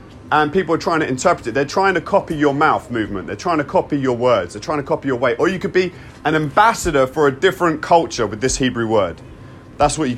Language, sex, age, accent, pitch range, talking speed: English, male, 30-49, British, 145-190 Hz, 255 wpm